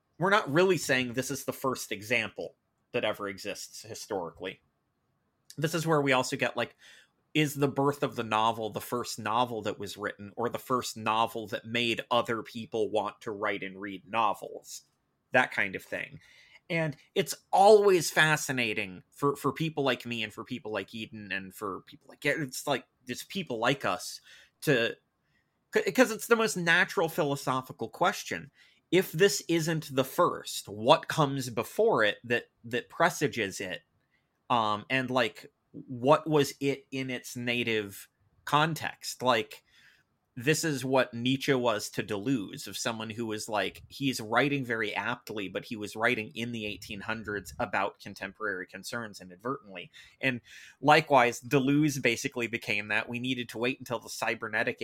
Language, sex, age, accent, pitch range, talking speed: English, male, 30-49, American, 110-140 Hz, 160 wpm